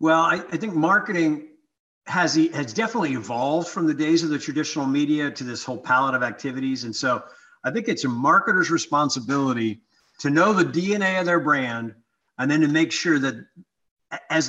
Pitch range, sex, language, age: 140-230 Hz, male, English, 50-69